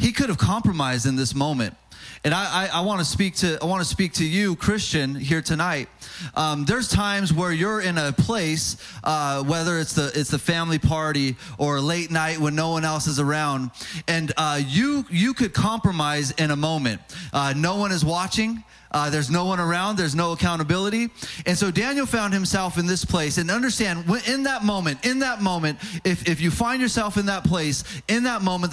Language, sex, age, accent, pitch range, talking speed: English, male, 20-39, American, 160-210 Hz, 205 wpm